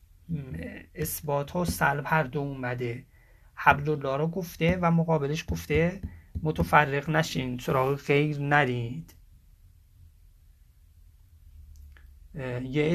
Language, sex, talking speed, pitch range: English, male, 90 wpm, 125-160 Hz